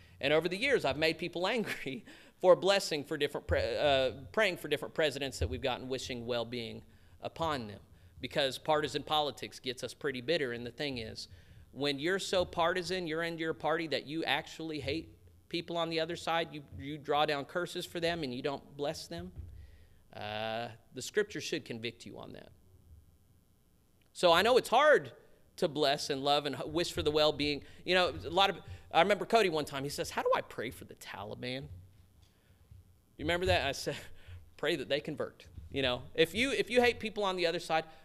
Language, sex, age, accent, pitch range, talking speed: English, male, 40-59, American, 110-170 Hz, 200 wpm